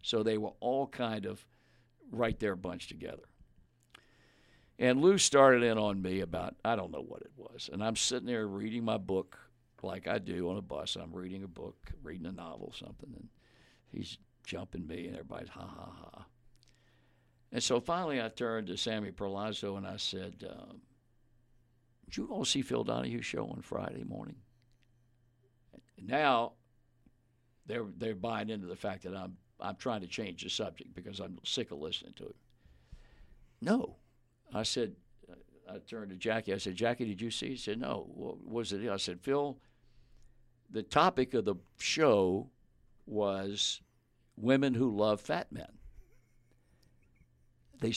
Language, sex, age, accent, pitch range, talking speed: English, male, 60-79, American, 105-125 Hz, 165 wpm